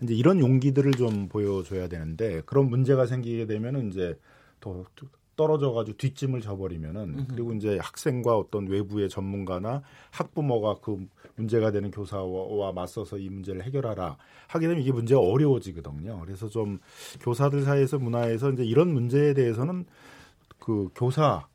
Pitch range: 100-140 Hz